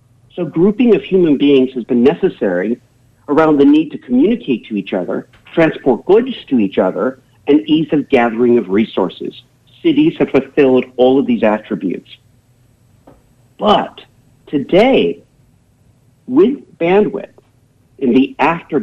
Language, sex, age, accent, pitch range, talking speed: English, male, 50-69, American, 120-165 Hz, 130 wpm